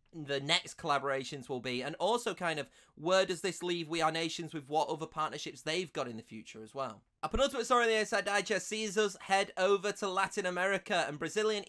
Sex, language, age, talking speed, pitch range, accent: male, English, 20-39, 215 wpm, 150-195 Hz, British